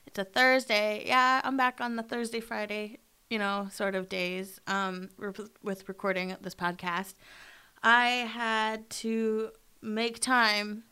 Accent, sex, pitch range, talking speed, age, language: American, female, 195-260 Hz, 145 wpm, 20-39, English